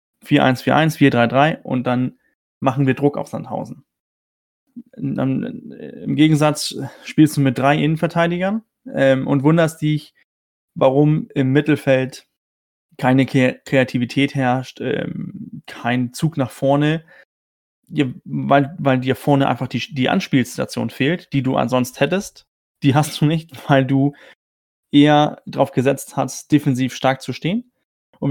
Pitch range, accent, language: 130-150 Hz, German, German